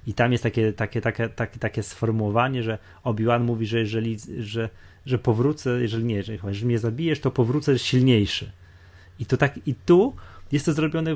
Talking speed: 175 wpm